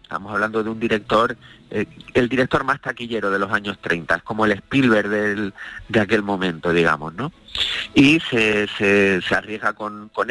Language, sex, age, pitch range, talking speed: Spanish, male, 30-49, 105-130 Hz, 175 wpm